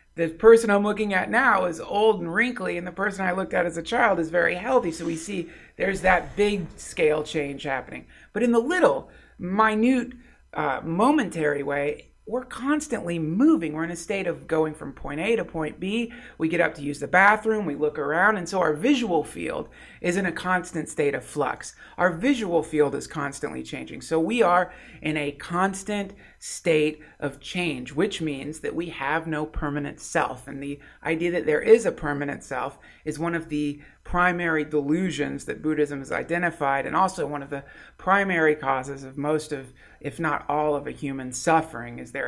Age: 30-49